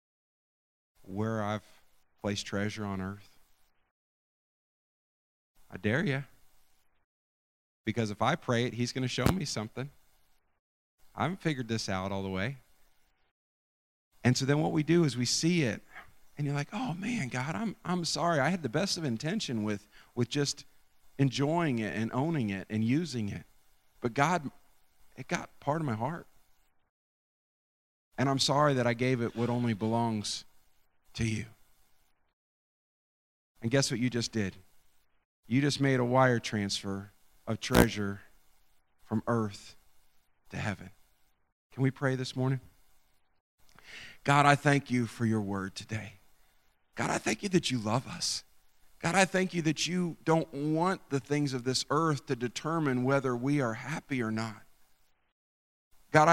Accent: American